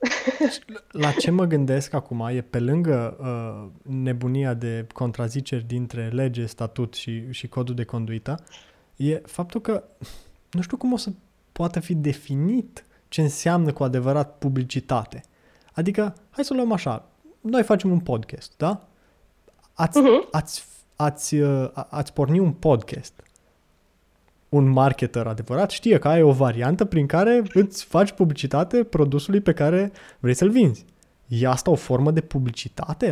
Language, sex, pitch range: Romanian, male, 125-175 Hz